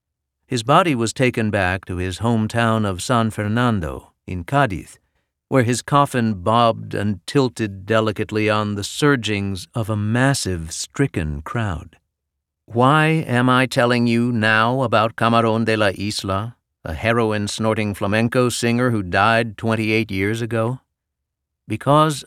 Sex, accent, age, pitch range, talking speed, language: male, American, 50-69, 90-125 Hz, 130 wpm, English